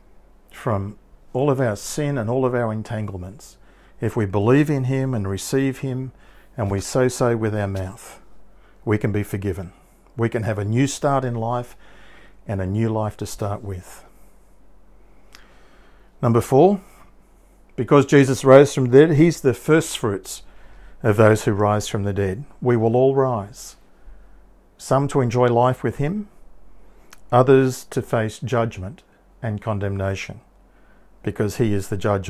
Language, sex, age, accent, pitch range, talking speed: English, male, 50-69, Australian, 105-130 Hz, 155 wpm